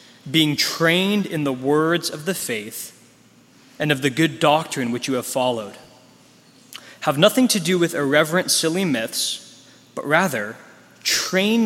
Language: English